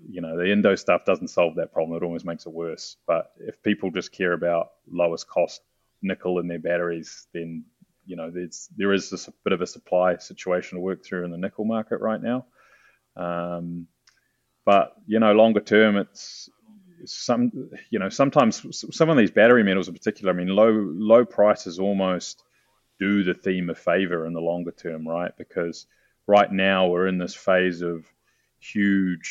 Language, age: English, 30-49